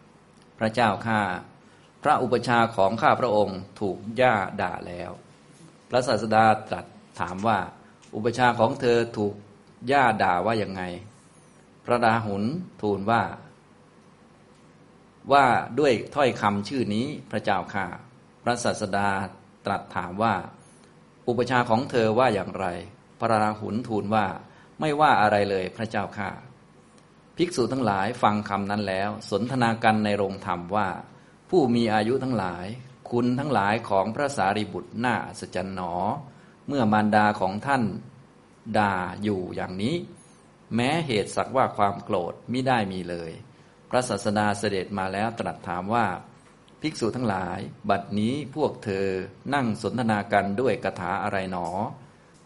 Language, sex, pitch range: Thai, male, 95-115 Hz